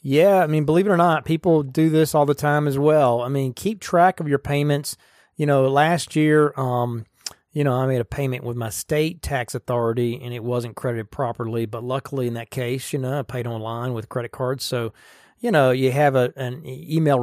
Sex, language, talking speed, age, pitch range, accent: male, English, 225 wpm, 40-59, 120-145 Hz, American